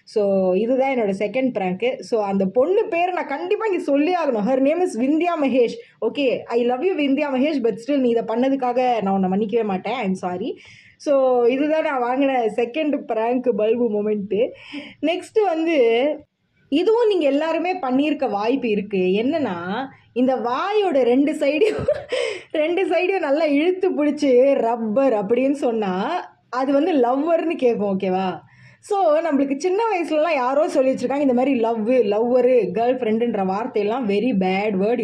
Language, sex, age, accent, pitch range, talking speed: Tamil, female, 20-39, native, 230-320 Hz, 150 wpm